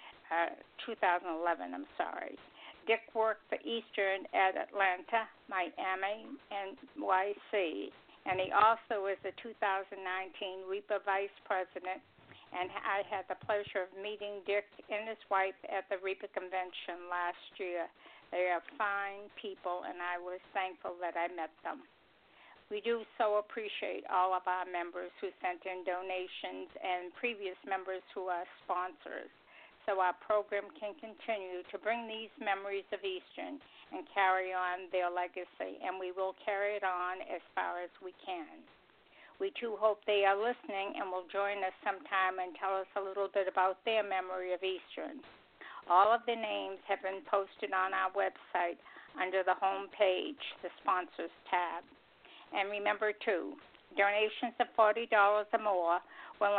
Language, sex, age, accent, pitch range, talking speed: English, female, 60-79, American, 185-210 Hz, 155 wpm